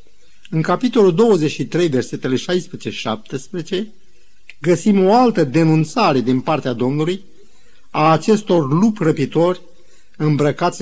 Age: 50-69